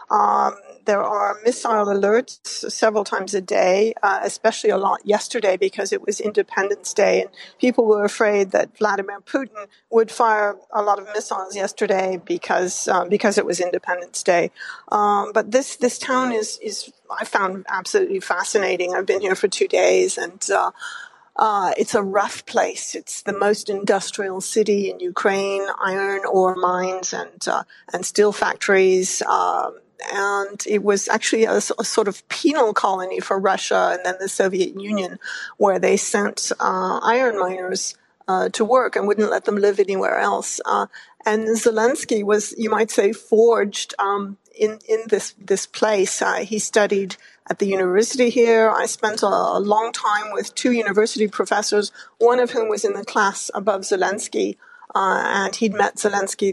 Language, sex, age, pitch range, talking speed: English, female, 50-69, 200-235 Hz, 170 wpm